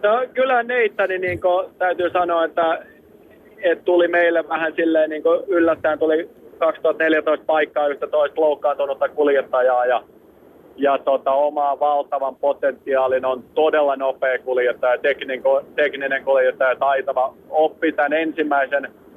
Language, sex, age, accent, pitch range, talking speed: Finnish, male, 30-49, native, 140-175 Hz, 120 wpm